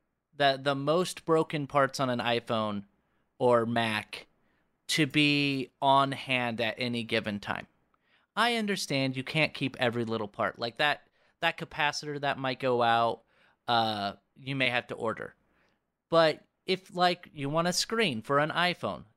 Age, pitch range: 30-49, 125-155 Hz